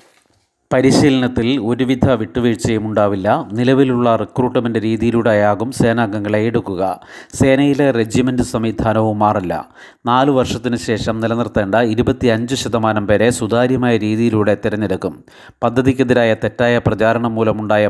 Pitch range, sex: 110-125 Hz, male